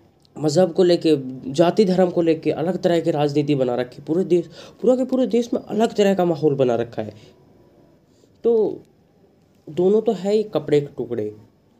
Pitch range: 135-175 Hz